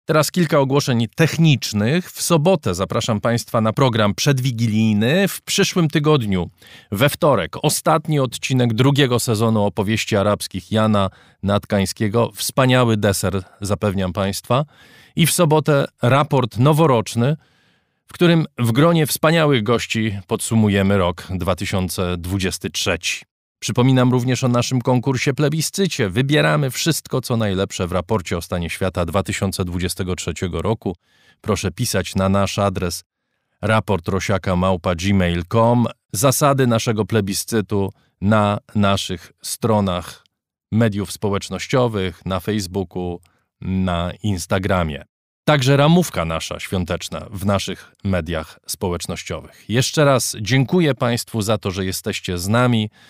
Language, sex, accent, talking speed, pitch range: Polish, male, native, 105 wpm, 95-130 Hz